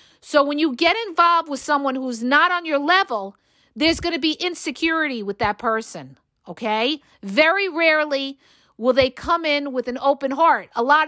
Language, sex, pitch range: English, female, 255-345 Hz